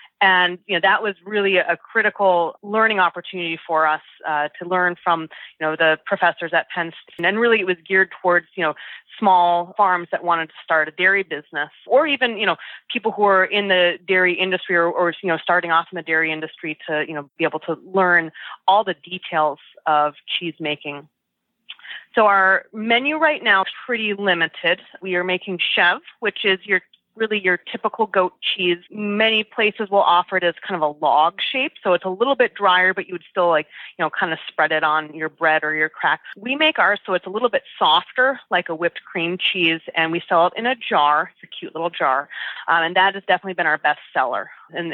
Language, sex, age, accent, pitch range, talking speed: English, female, 30-49, American, 170-220 Hz, 220 wpm